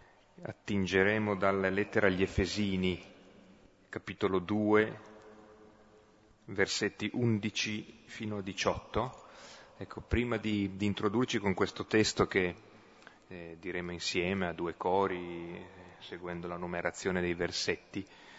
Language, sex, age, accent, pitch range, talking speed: Italian, male, 30-49, native, 90-105 Hz, 105 wpm